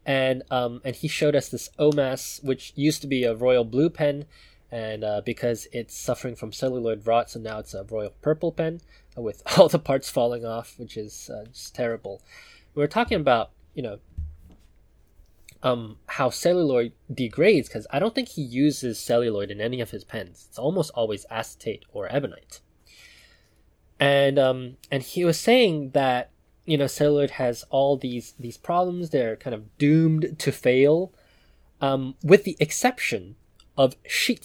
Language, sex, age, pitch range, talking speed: English, male, 20-39, 115-150 Hz, 170 wpm